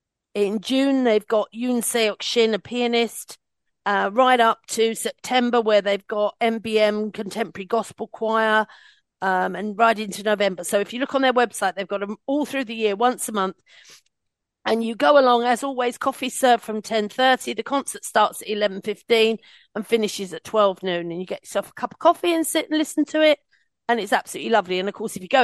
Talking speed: 205 wpm